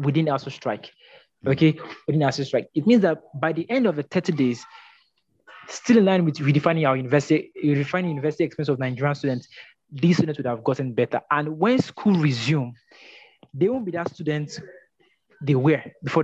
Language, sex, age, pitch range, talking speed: English, male, 20-39, 135-165 Hz, 175 wpm